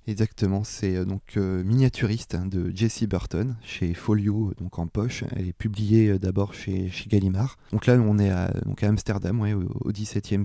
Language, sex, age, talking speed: French, male, 20-39, 190 wpm